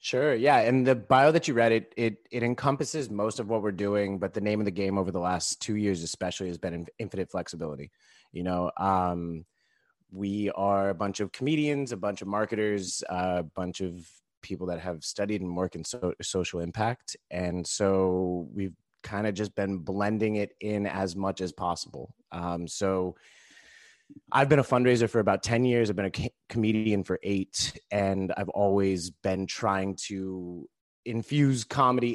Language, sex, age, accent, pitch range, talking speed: English, male, 30-49, American, 95-110 Hz, 180 wpm